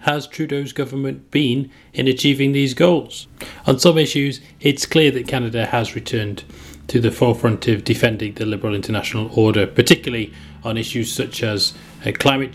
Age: 30-49